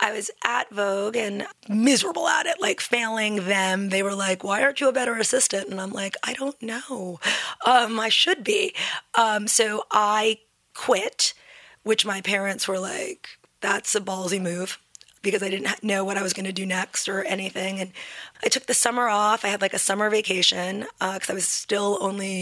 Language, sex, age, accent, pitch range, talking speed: English, female, 30-49, American, 195-235 Hz, 200 wpm